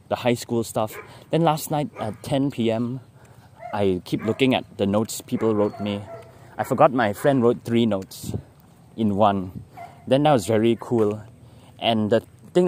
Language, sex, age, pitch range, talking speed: English, male, 20-39, 105-145 Hz, 165 wpm